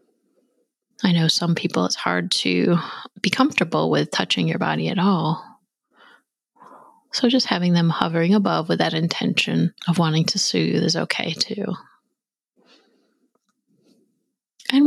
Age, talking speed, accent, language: 30-49, 130 wpm, American, English